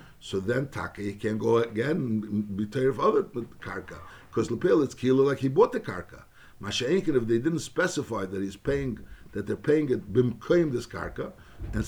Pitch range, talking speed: 105-140 Hz, 185 wpm